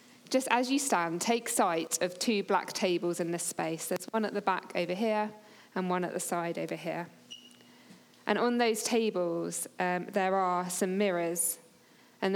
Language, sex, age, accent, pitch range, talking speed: English, female, 20-39, British, 175-215 Hz, 180 wpm